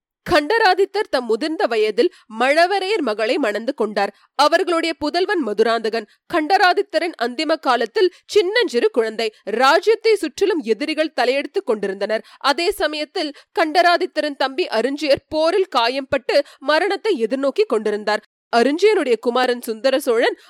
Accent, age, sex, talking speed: native, 30-49, female, 100 wpm